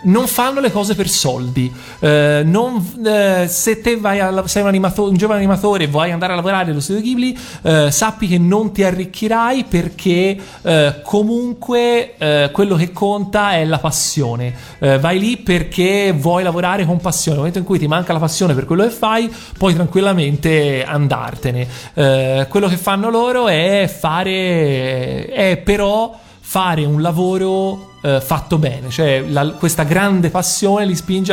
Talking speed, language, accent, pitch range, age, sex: 165 wpm, Italian, native, 140-190 Hz, 30-49, male